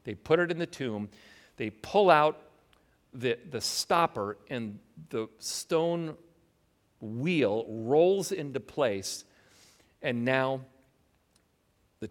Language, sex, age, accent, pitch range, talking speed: English, male, 50-69, American, 110-165 Hz, 110 wpm